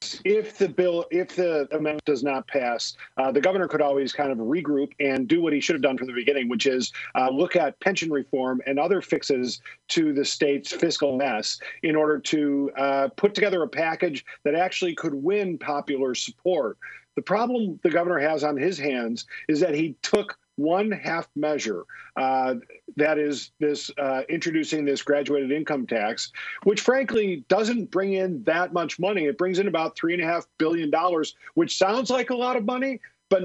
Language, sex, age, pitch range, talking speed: English, male, 50-69, 145-185 Hz, 190 wpm